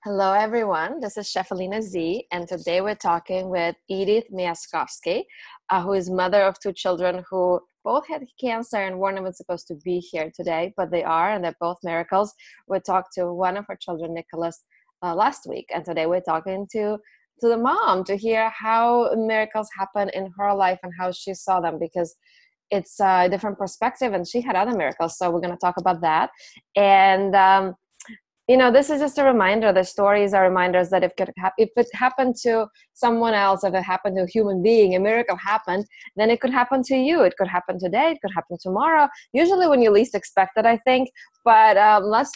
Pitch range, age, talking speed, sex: 180-230 Hz, 20-39, 205 wpm, female